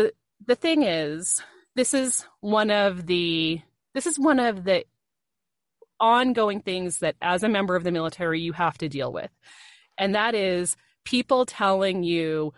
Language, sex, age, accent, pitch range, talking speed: English, female, 30-49, American, 180-270 Hz, 155 wpm